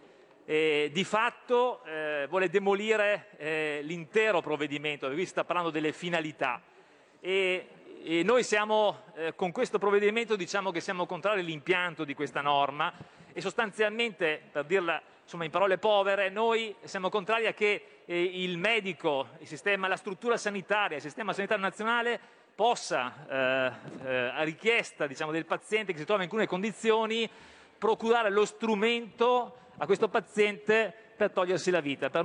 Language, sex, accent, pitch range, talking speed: Italian, male, native, 165-215 Hz, 155 wpm